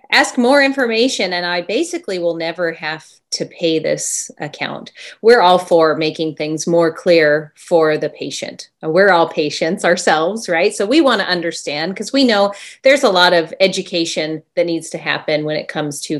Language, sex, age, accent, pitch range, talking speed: English, female, 30-49, American, 160-190 Hz, 180 wpm